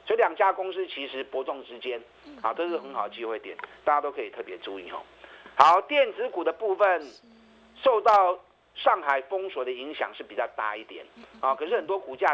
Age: 50-69